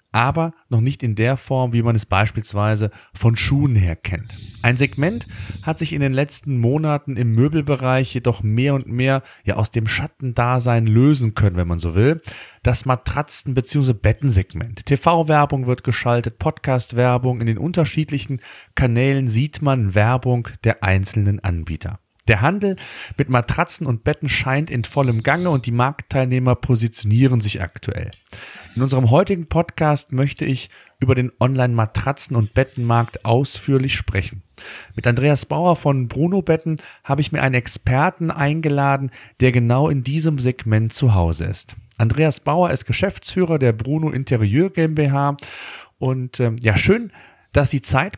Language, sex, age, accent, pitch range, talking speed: German, male, 40-59, German, 115-145 Hz, 145 wpm